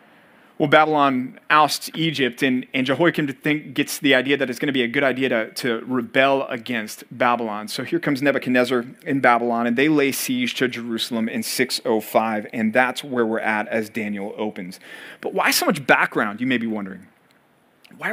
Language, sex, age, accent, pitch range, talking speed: English, male, 30-49, American, 125-170 Hz, 180 wpm